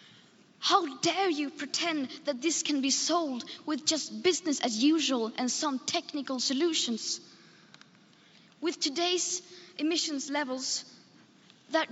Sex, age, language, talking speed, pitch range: female, 20-39, Persian, 115 wpm, 265-320 Hz